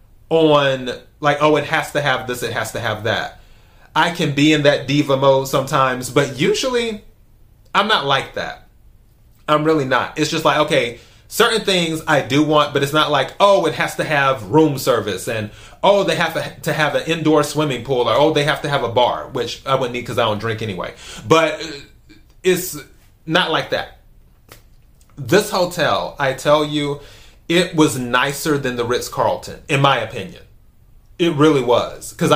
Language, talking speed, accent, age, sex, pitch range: English, 185 wpm, American, 30-49, male, 125-155 Hz